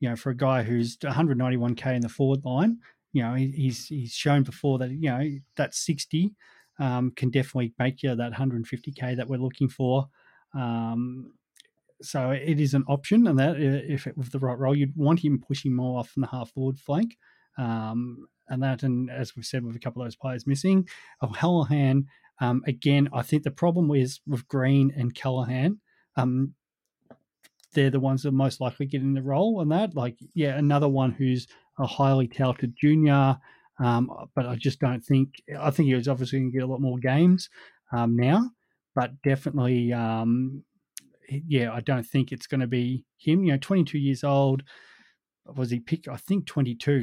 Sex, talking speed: male, 190 wpm